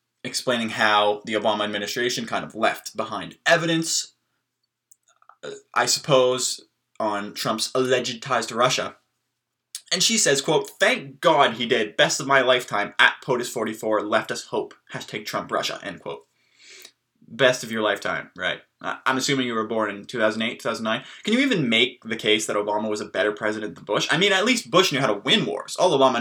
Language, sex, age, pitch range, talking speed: English, male, 20-39, 110-140 Hz, 185 wpm